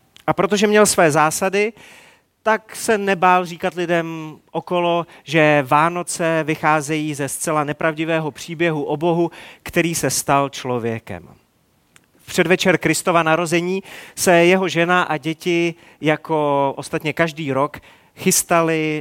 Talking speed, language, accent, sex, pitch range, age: 120 wpm, Czech, native, male, 145-175 Hz, 40-59